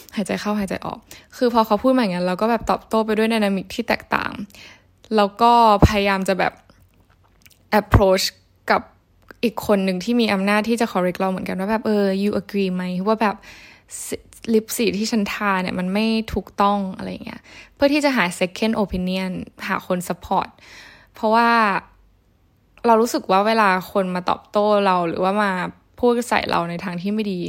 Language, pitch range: Thai, 185-225 Hz